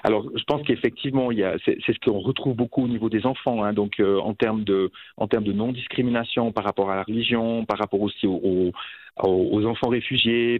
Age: 40-59